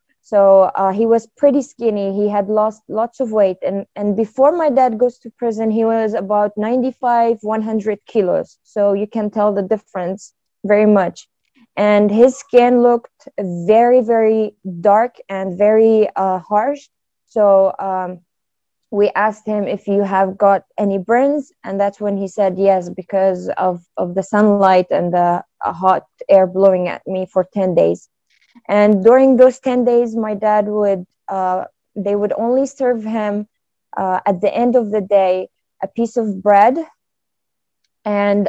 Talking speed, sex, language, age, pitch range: 160 wpm, female, English, 20-39, 195-225 Hz